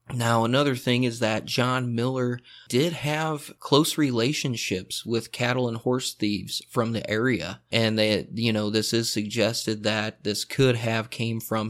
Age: 30-49